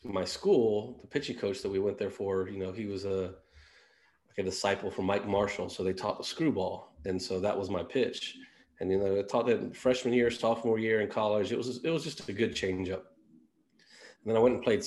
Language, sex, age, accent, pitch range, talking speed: English, male, 30-49, American, 95-115 Hz, 240 wpm